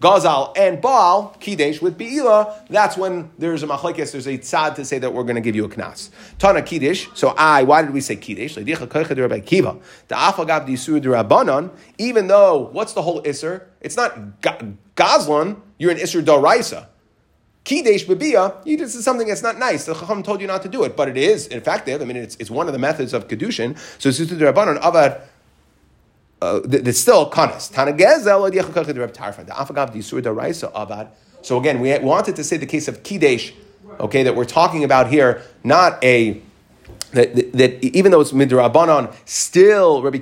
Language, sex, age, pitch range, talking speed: English, male, 30-49, 120-175 Hz, 165 wpm